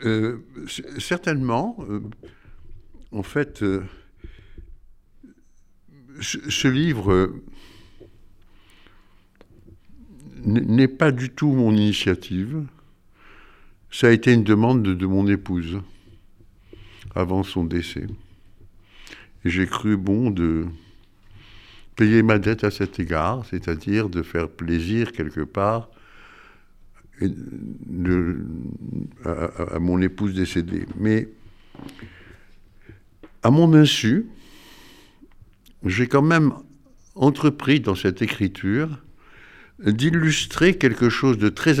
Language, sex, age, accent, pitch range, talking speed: French, male, 60-79, French, 95-120 Hz, 95 wpm